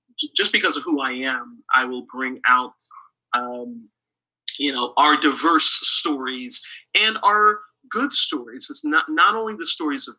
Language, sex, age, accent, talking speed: English, male, 40-59, American, 160 wpm